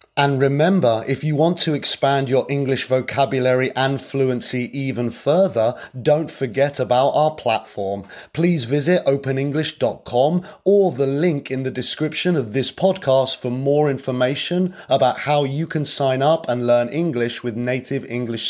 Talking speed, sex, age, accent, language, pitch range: 150 wpm, male, 30-49, British, English, 120-150 Hz